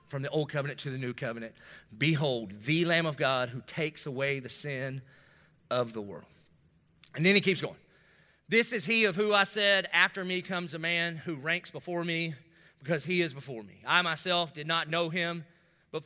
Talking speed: 200 wpm